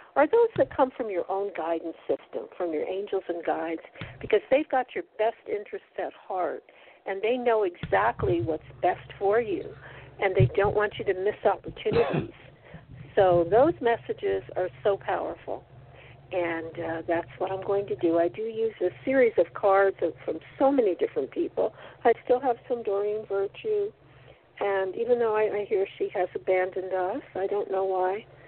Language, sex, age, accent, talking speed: English, female, 60-79, American, 175 wpm